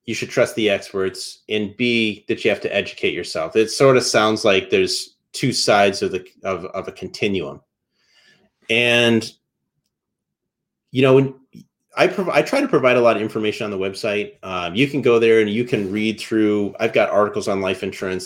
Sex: male